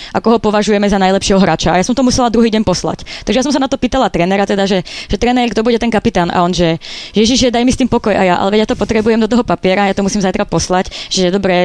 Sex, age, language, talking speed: female, 20-39, Slovak, 305 wpm